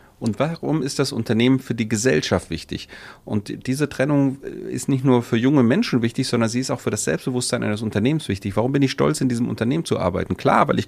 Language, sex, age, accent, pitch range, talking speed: German, male, 40-59, German, 95-130 Hz, 225 wpm